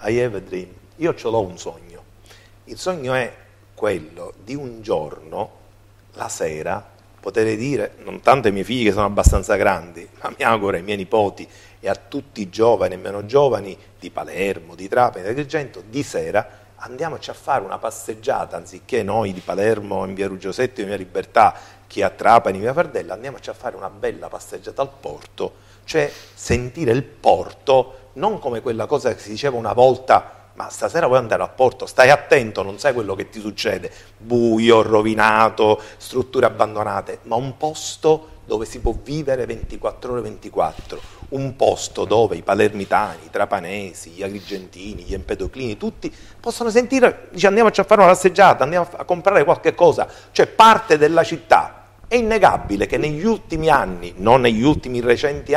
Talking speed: 170 wpm